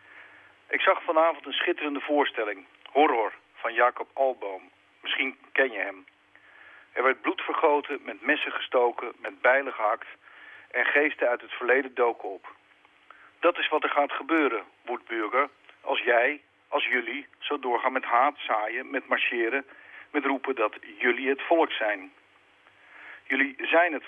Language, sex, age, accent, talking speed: Dutch, male, 50-69, Dutch, 145 wpm